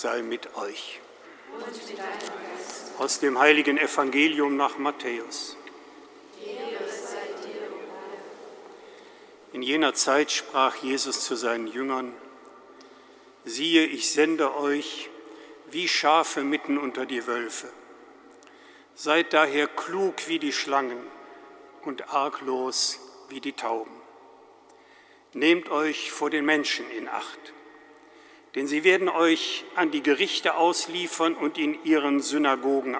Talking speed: 105 wpm